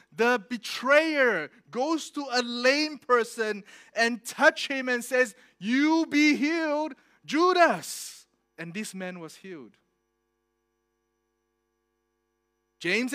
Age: 30-49